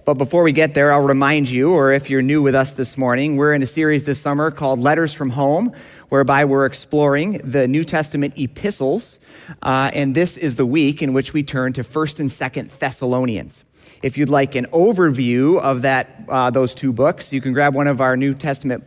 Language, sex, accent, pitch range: English, male, American, 125-145 Hz